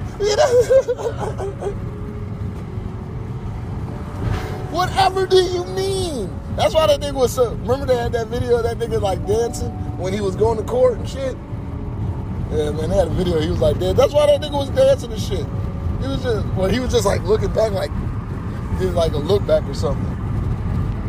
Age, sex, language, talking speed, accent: 30-49, male, English, 190 wpm, American